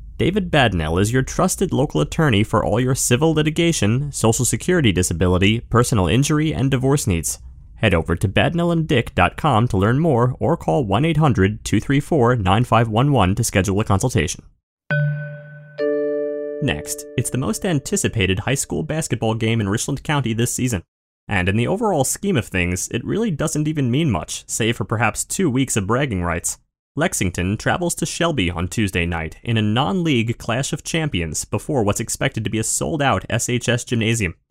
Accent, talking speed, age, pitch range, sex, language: American, 160 wpm, 30-49, 100-145 Hz, male, English